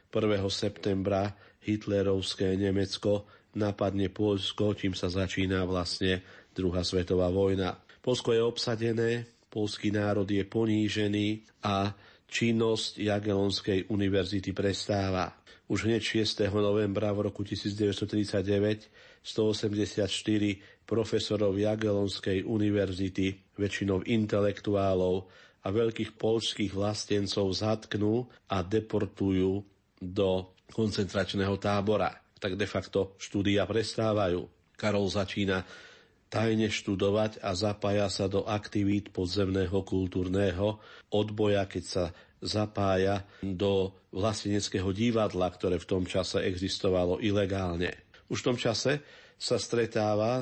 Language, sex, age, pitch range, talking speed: Slovak, male, 40-59, 95-105 Hz, 100 wpm